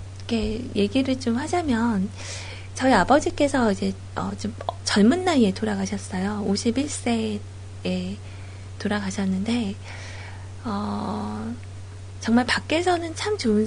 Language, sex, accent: Korean, female, native